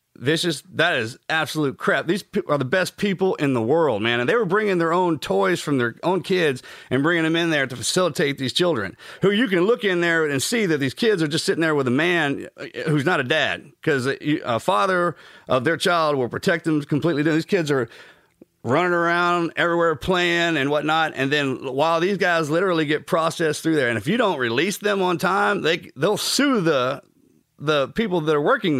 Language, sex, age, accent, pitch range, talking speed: English, male, 40-59, American, 150-185 Hz, 215 wpm